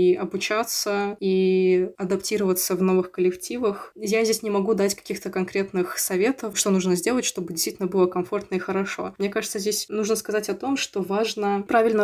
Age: 20-39